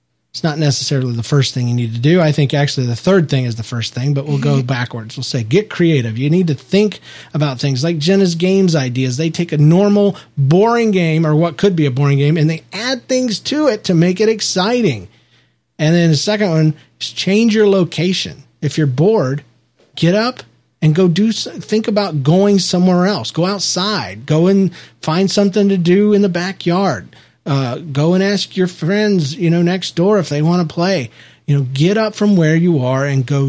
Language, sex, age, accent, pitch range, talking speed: English, male, 40-59, American, 140-195 Hz, 215 wpm